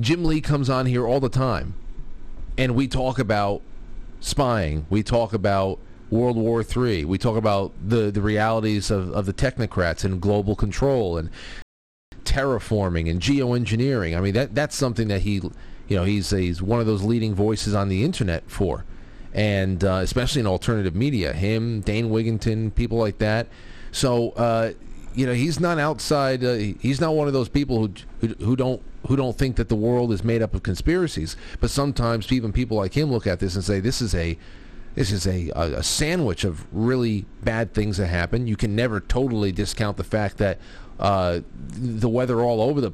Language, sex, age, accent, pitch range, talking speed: English, male, 40-59, American, 95-120 Hz, 190 wpm